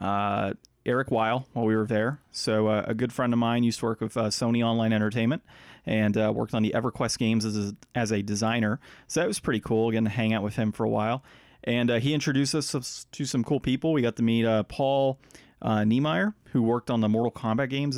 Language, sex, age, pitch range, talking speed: English, male, 30-49, 110-140 Hz, 240 wpm